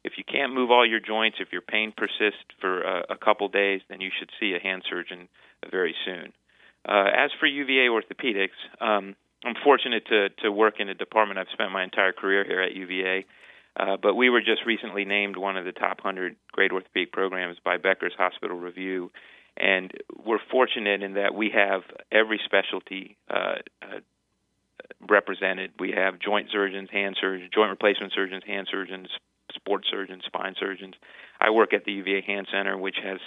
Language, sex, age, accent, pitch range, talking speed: English, male, 40-59, American, 95-110 Hz, 185 wpm